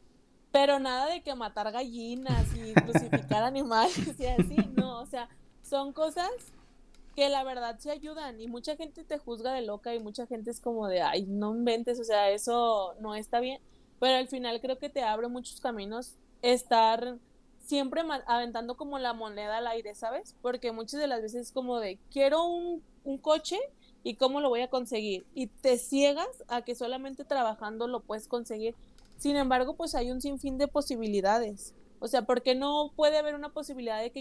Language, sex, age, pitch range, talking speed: Spanish, female, 20-39, 225-270 Hz, 195 wpm